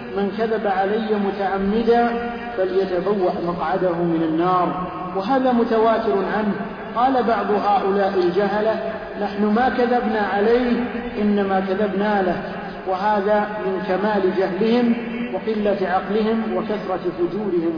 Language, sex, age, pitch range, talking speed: Arabic, male, 50-69, 195-230 Hz, 100 wpm